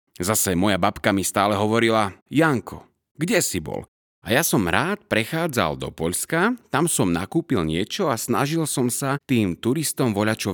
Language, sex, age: Slovak, male, 30-49